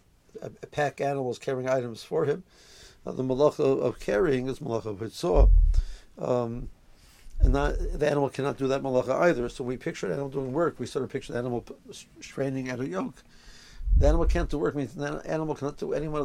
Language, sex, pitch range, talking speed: English, male, 120-140 Hz, 205 wpm